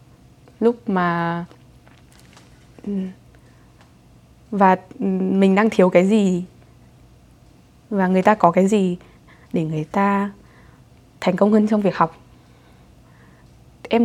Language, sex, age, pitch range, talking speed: Vietnamese, female, 20-39, 175-220 Hz, 105 wpm